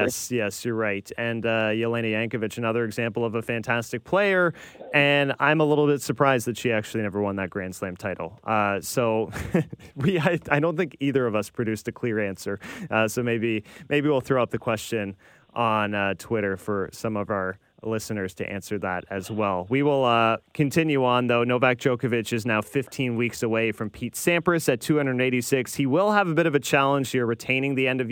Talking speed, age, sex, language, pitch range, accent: 205 wpm, 20-39, male, English, 110-140 Hz, American